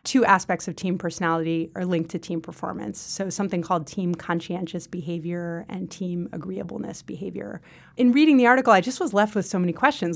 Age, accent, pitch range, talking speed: 30-49, American, 175-205 Hz, 190 wpm